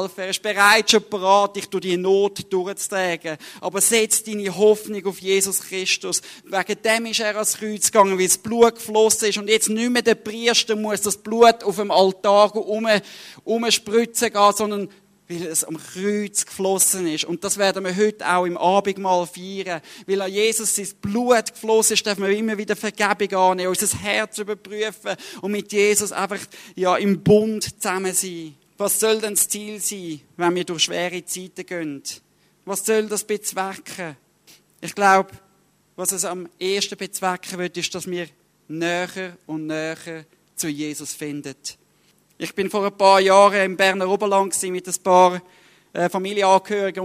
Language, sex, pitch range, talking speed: German, male, 180-210 Hz, 165 wpm